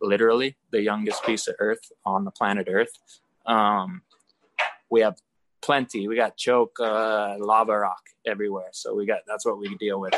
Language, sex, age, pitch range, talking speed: English, male, 20-39, 100-120 Hz, 170 wpm